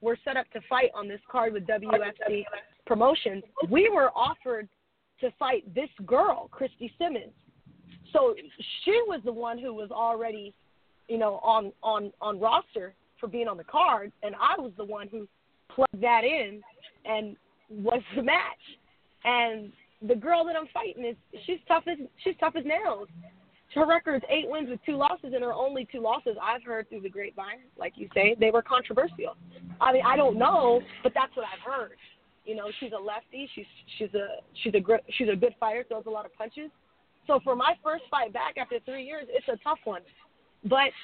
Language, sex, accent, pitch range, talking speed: English, female, American, 215-275 Hz, 195 wpm